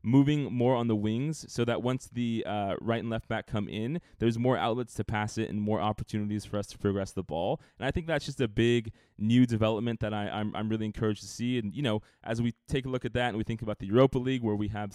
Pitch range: 105-125 Hz